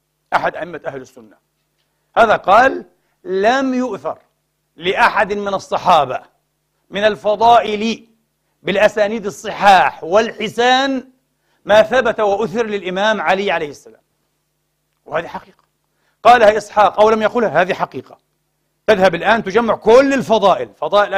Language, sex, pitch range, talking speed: Arabic, male, 190-230 Hz, 110 wpm